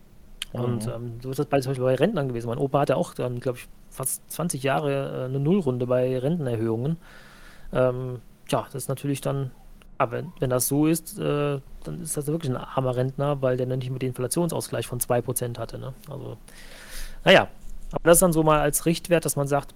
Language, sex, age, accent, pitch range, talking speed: German, male, 30-49, German, 130-160 Hz, 210 wpm